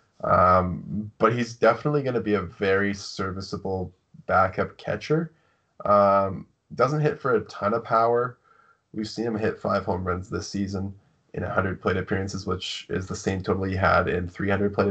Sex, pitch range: male, 90-105 Hz